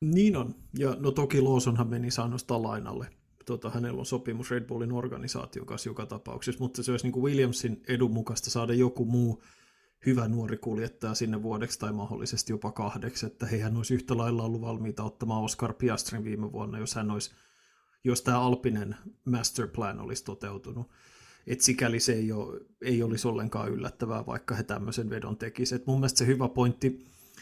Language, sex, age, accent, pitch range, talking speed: Finnish, male, 30-49, native, 110-125 Hz, 175 wpm